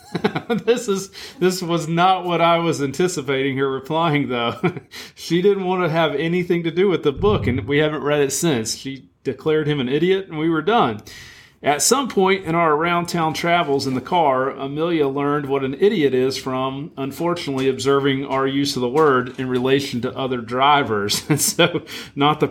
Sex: male